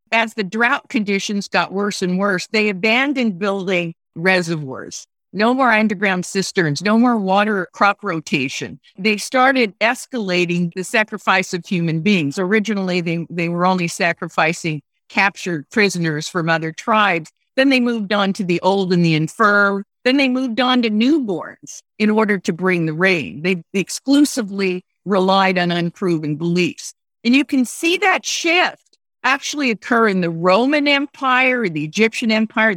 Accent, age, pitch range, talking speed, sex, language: American, 50-69, 180-240 Hz, 150 wpm, female, English